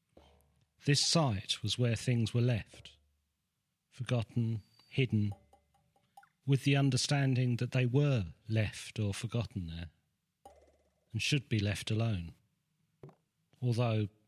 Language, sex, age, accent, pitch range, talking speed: English, male, 40-59, British, 95-130 Hz, 105 wpm